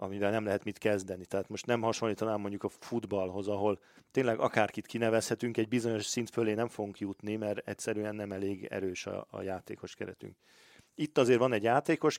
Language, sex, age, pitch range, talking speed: Hungarian, male, 40-59, 105-125 Hz, 180 wpm